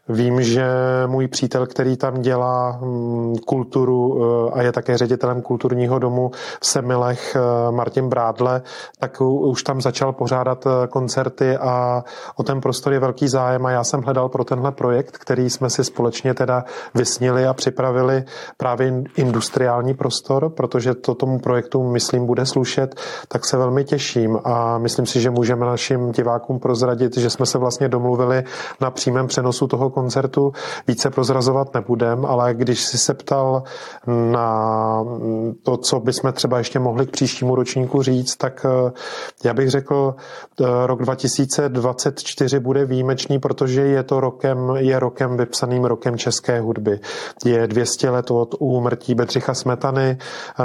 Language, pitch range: Czech, 120-130 Hz